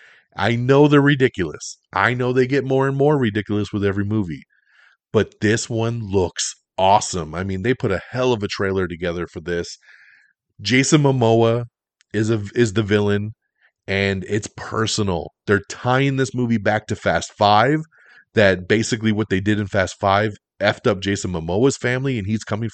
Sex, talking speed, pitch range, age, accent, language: male, 175 wpm, 100-125 Hz, 30-49, American, English